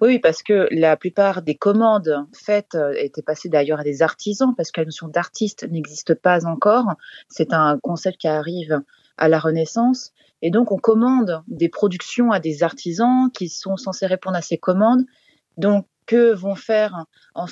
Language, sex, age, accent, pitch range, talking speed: French, female, 30-49, French, 165-215 Hz, 175 wpm